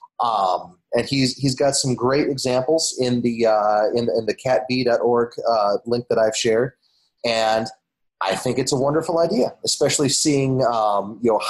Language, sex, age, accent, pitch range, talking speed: English, male, 30-49, American, 115-140 Hz, 170 wpm